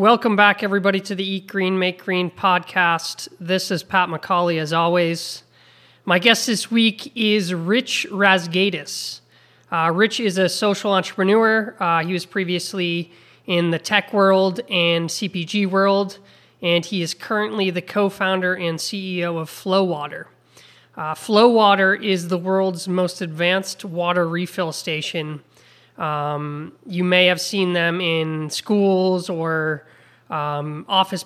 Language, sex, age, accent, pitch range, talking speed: English, male, 20-39, American, 165-195 Hz, 140 wpm